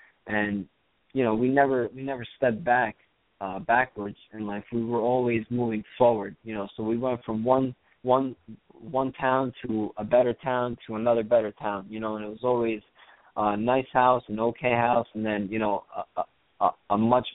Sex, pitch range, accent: male, 105-125 Hz, American